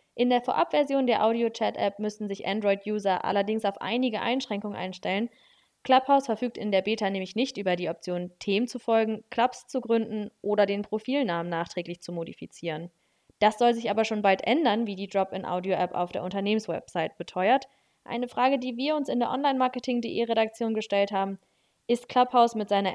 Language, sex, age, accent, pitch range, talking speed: German, female, 20-39, German, 195-245 Hz, 165 wpm